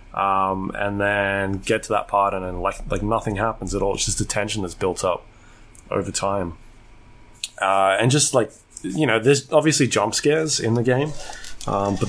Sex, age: male, 20-39